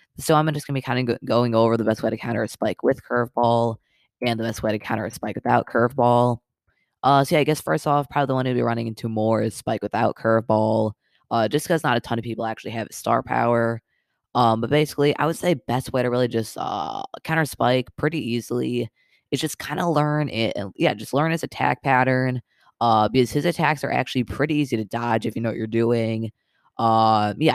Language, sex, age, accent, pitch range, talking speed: English, female, 20-39, American, 115-135 Hz, 230 wpm